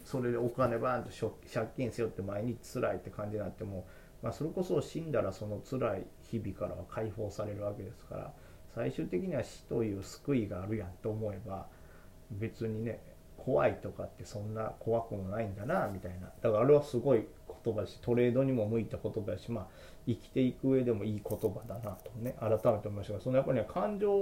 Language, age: Japanese, 40-59